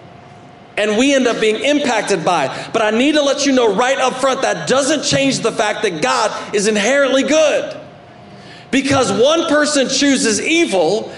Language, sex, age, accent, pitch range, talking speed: English, male, 40-59, American, 155-260 Hz, 175 wpm